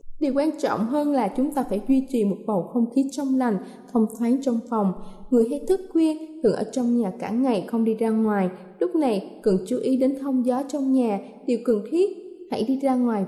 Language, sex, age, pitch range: Thai, female, 10-29, 225-285 Hz